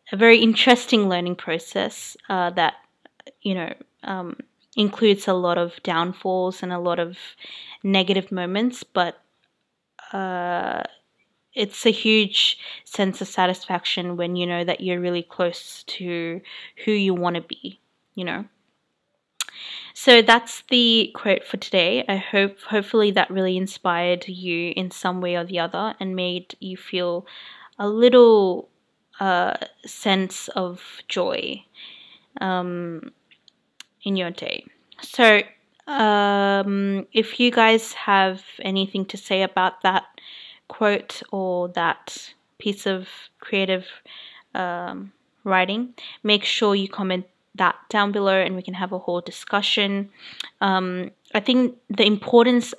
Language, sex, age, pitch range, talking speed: English, female, 20-39, 180-210 Hz, 130 wpm